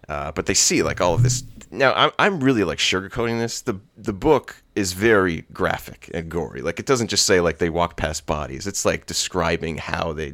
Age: 30-49